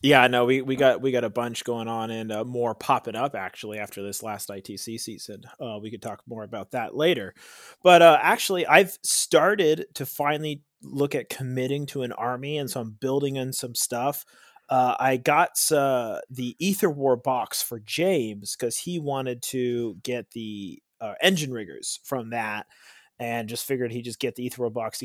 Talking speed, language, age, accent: 195 wpm, English, 30-49, American